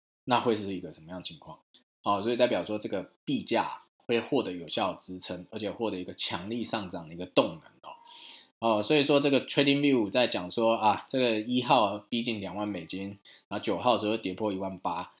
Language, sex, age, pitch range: Chinese, male, 20-39, 95-125 Hz